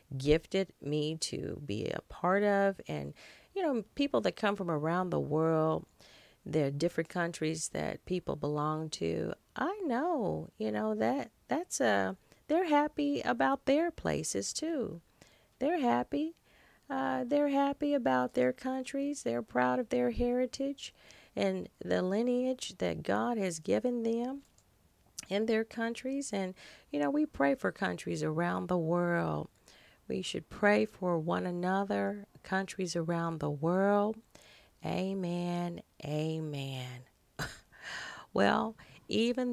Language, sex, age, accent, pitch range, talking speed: English, female, 40-59, American, 145-205 Hz, 130 wpm